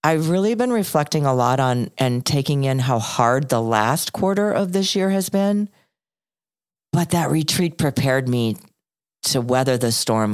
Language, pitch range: English, 130-185 Hz